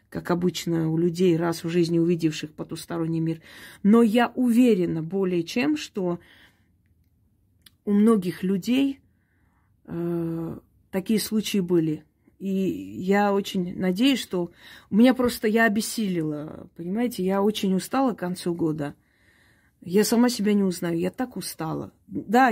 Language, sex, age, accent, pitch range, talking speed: Russian, female, 30-49, native, 165-215 Hz, 130 wpm